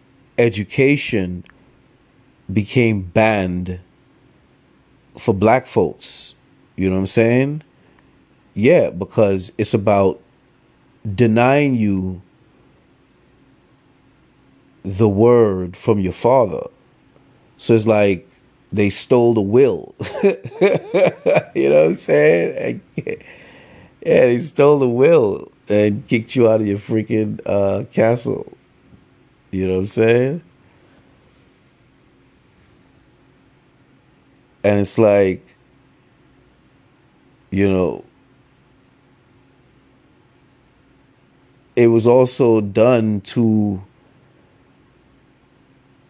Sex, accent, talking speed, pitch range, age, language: male, American, 80 wpm, 100-125 Hz, 30-49, English